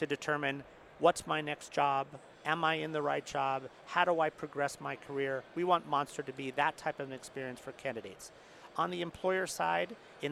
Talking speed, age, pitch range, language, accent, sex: 205 wpm, 40-59, 140-165 Hz, English, American, male